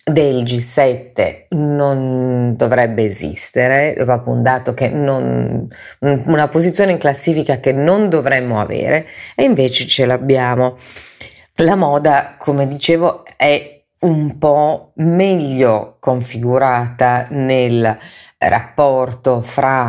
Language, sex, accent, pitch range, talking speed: Italian, female, native, 120-145 Hz, 105 wpm